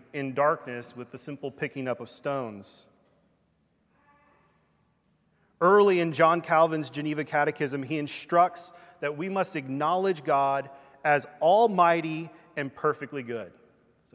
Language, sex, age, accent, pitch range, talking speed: English, male, 30-49, American, 140-185 Hz, 120 wpm